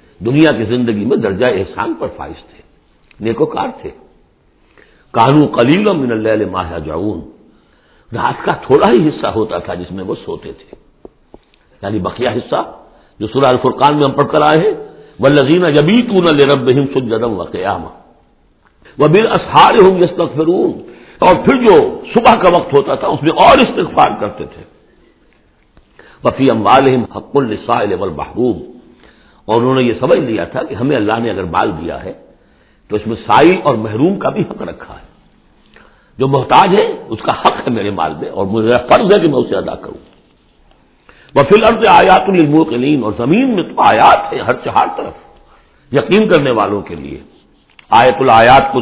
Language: Urdu